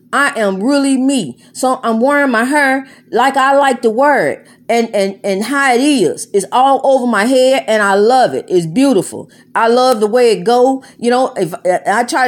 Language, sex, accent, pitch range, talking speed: English, female, American, 255-310 Hz, 205 wpm